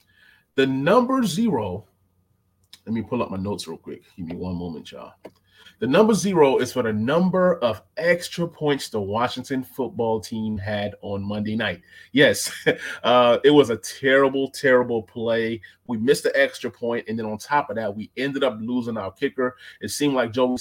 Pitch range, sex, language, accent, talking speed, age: 105-140 Hz, male, English, American, 185 wpm, 30-49